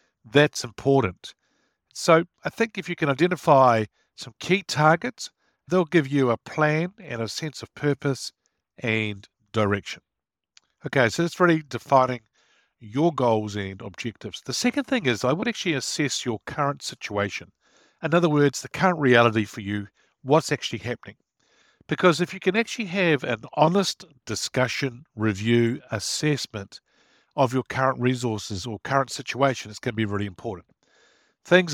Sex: male